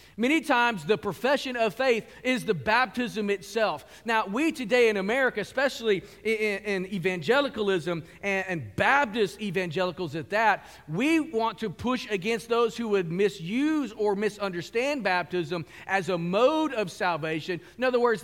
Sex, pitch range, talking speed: male, 185-235 Hz, 150 wpm